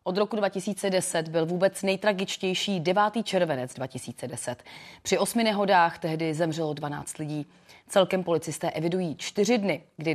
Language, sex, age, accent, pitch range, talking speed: Czech, female, 30-49, native, 155-200 Hz, 130 wpm